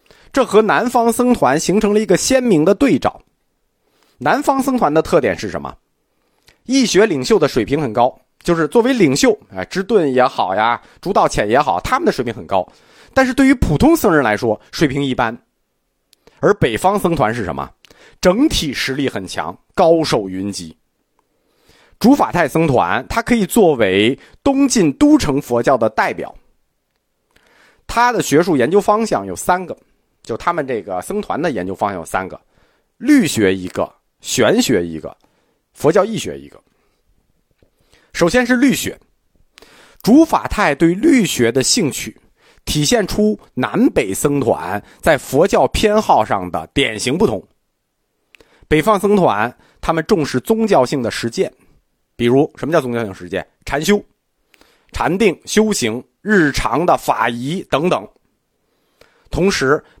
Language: Chinese